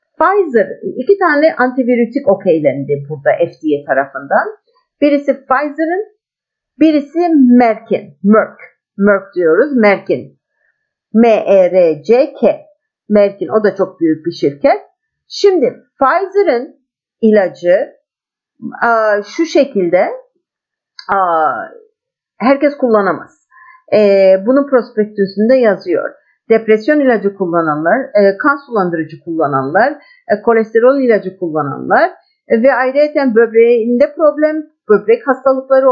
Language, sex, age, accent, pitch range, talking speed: Turkish, female, 50-69, native, 200-315 Hz, 85 wpm